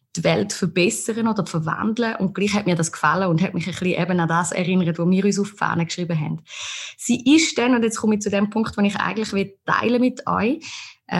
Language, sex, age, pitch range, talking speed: German, female, 20-39, 170-215 Hz, 245 wpm